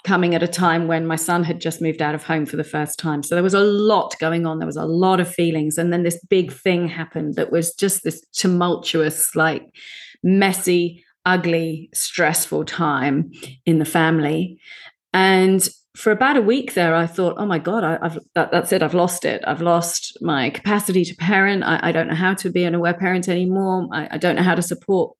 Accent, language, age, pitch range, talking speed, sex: British, English, 40-59, 165-190 Hz, 220 wpm, female